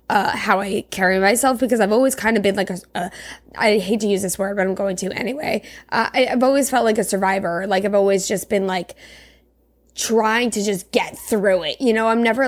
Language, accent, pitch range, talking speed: English, American, 195-245 Hz, 235 wpm